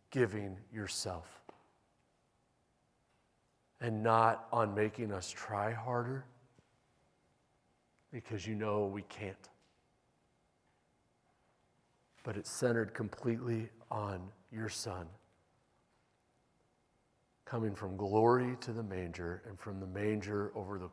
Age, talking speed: 40-59, 95 wpm